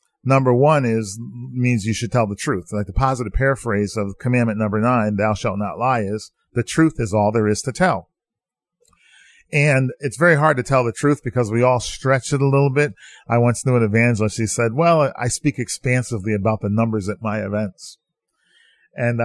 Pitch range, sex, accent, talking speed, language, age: 110-140 Hz, male, American, 200 wpm, English, 40-59